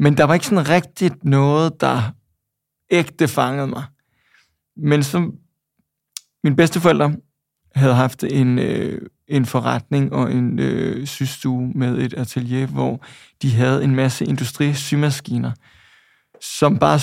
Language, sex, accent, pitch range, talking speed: Danish, male, native, 130-150 Hz, 125 wpm